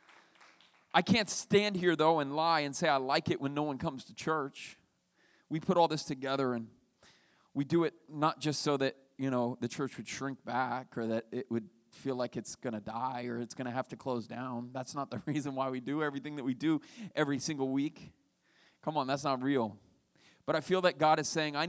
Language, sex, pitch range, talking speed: English, male, 135-165 Hz, 230 wpm